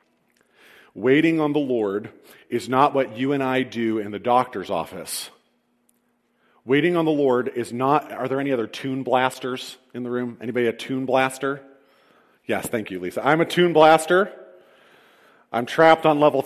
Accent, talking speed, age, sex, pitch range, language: American, 170 wpm, 40-59, male, 120-160 Hz, English